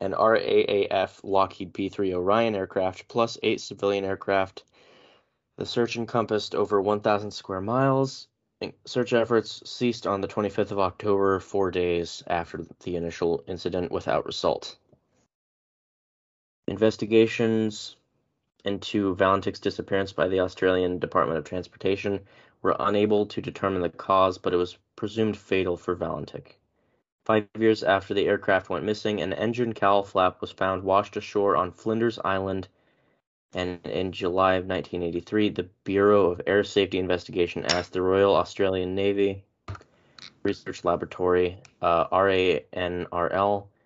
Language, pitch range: English, 90-105 Hz